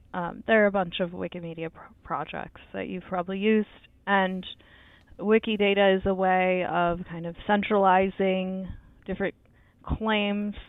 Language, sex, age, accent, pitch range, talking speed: English, female, 20-39, American, 170-210 Hz, 135 wpm